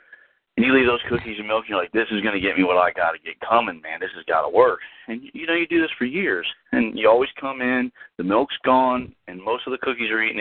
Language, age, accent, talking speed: English, 30-49, American, 290 wpm